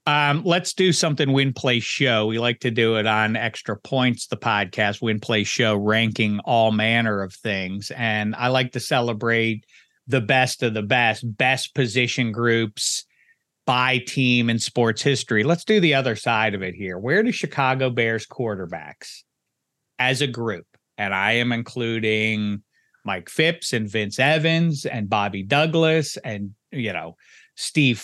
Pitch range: 110-135 Hz